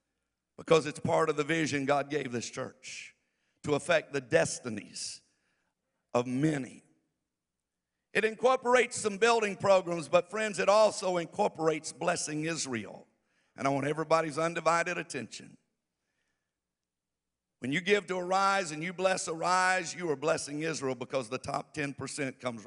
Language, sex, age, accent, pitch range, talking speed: English, male, 60-79, American, 135-190 Hz, 140 wpm